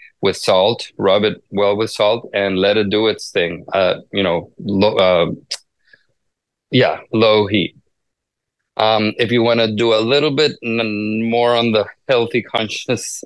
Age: 20-39